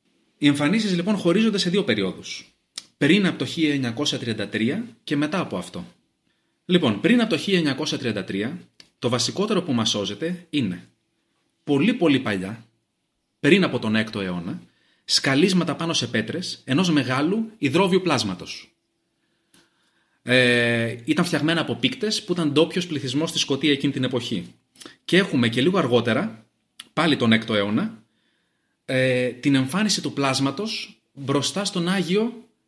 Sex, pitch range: male, 130-190 Hz